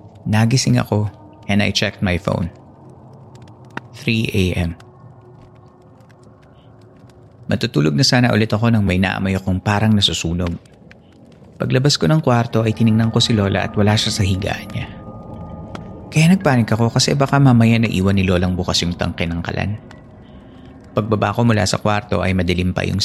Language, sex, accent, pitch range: Filipino, male, native, 100-125 Hz